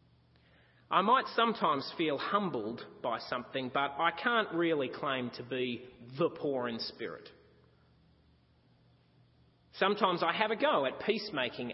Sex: male